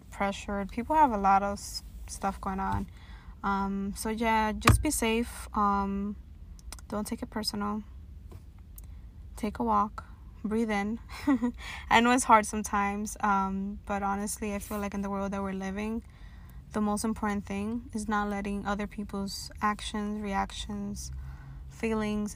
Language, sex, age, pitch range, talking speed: English, female, 20-39, 190-220 Hz, 140 wpm